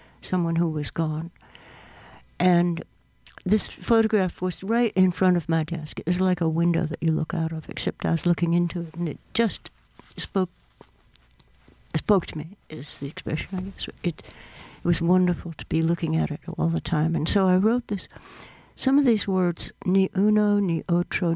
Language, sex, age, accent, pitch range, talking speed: English, female, 60-79, American, 160-180 Hz, 190 wpm